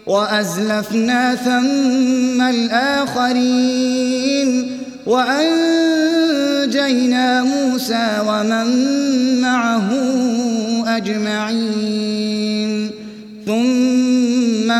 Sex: male